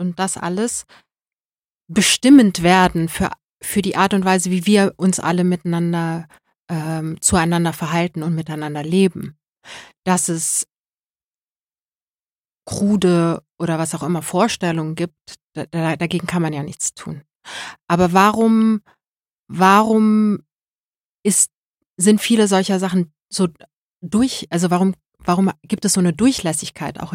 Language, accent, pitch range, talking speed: German, German, 160-190 Hz, 125 wpm